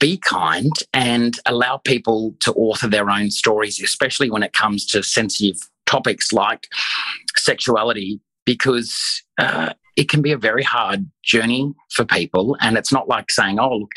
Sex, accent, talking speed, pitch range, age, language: male, Australian, 160 wpm, 100-115 Hz, 30-49, English